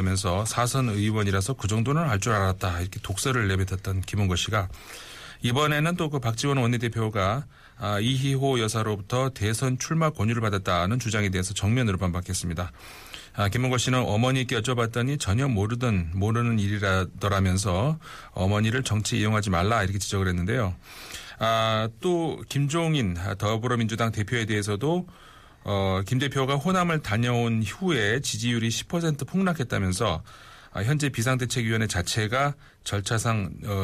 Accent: native